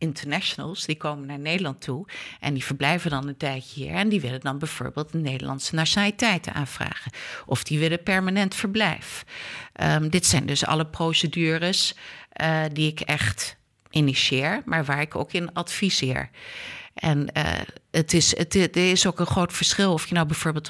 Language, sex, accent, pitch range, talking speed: Dutch, female, Dutch, 145-190 Hz, 170 wpm